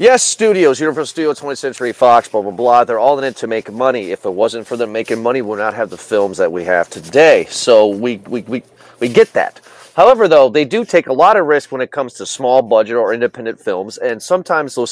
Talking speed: 240 wpm